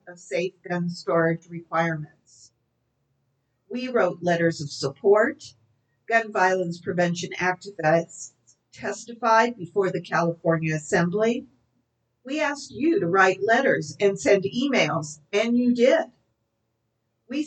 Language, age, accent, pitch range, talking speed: English, 50-69, American, 165-235 Hz, 110 wpm